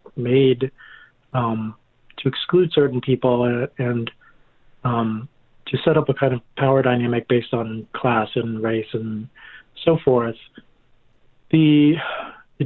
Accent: American